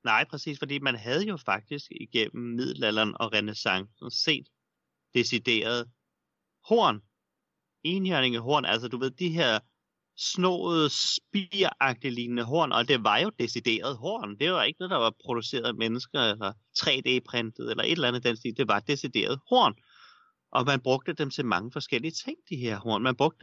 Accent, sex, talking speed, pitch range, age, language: native, male, 160 wpm, 115-150 Hz, 30-49, Danish